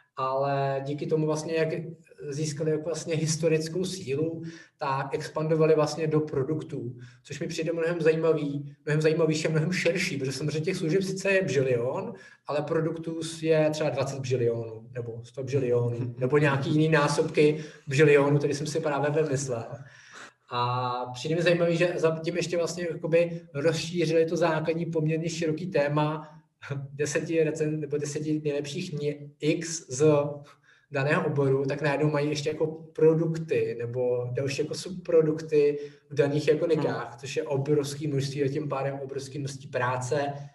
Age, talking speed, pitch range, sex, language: 20-39, 145 wpm, 140-160 Hz, male, Czech